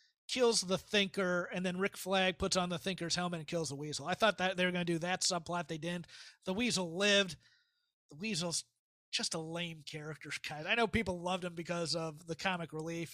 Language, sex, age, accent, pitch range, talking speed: English, male, 30-49, American, 170-210 Hz, 215 wpm